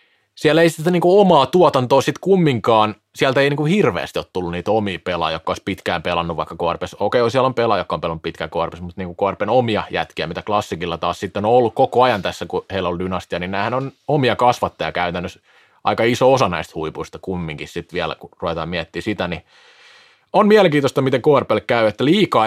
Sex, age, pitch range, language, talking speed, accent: male, 30-49, 90-125 Hz, Finnish, 210 wpm, native